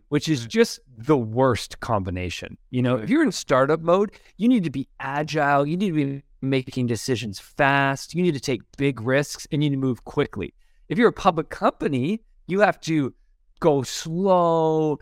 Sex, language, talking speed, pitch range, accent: male, English, 190 wpm, 120-160 Hz, American